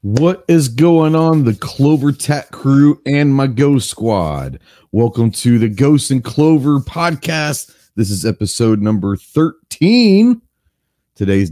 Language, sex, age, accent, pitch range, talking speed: English, male, 40-59, American, 110-145 Hz, 130 wpm